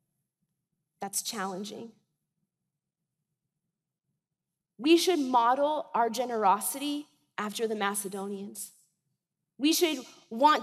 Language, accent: English, American